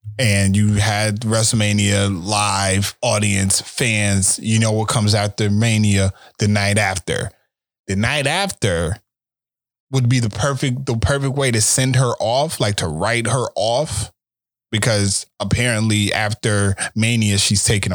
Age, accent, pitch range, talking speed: 20-39, American, 105-125 Hz, 135 wpm